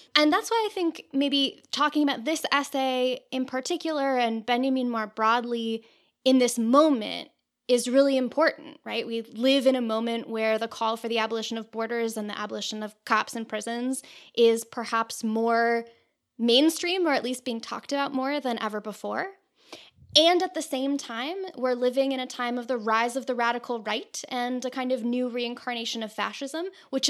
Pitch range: 225-275 Hz